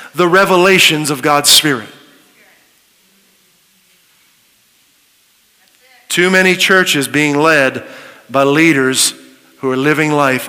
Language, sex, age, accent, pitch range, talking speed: English, male, 50-69, American, 165-215 Hz, 90 wpm